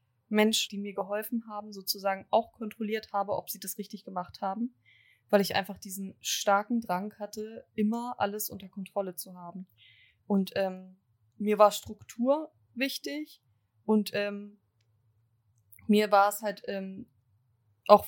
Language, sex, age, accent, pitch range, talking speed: German, female, 20-39, German, 185-220 Hz, 135 wpm